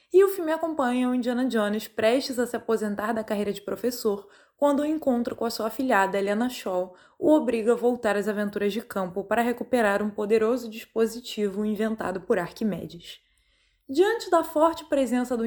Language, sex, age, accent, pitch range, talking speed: Portuguese, female, 20-39, Brazilian, 215-270 Hz, 180 wpm